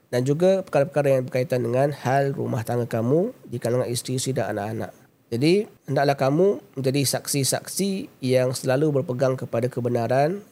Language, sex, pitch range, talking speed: Malay, male, 120-145 Hz, 150 wpm